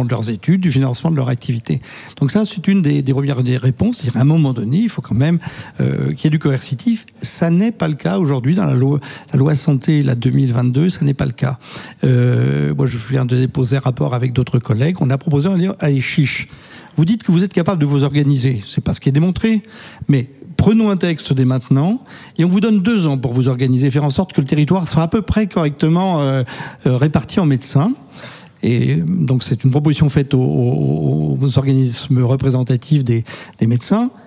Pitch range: 130-170 Hz